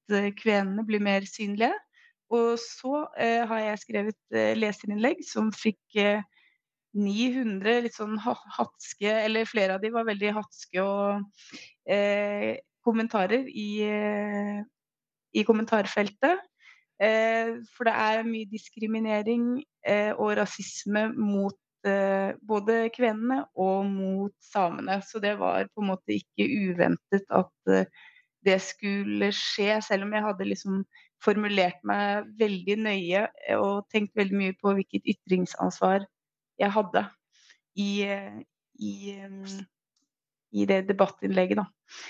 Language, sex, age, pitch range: Polish, female, 30-49, 200-225 Hz